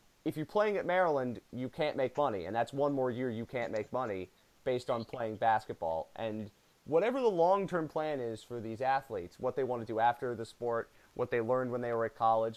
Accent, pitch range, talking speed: American, 115-170 Hz, 225 wpm